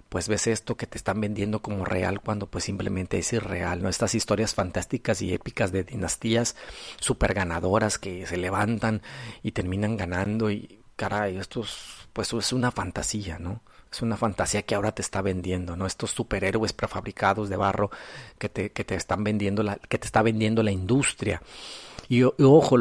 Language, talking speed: Spanish, 180 wpm